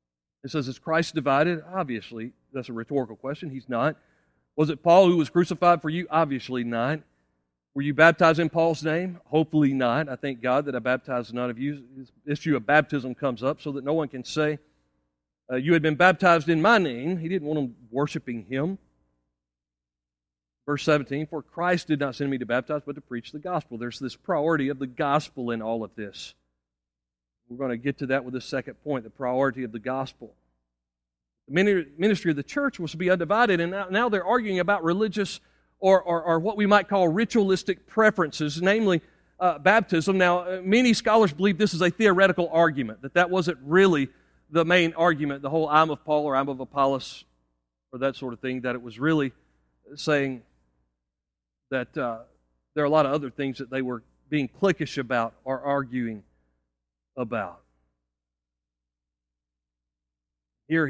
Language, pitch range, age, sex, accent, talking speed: English, 115-165 Hz, 40-59, male, American, 185 wpm